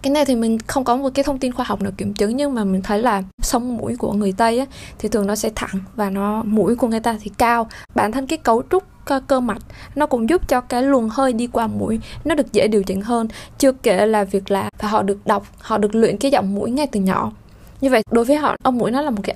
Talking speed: 280 wpm